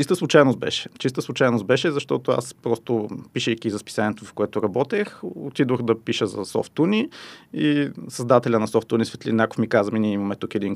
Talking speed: 175 wpm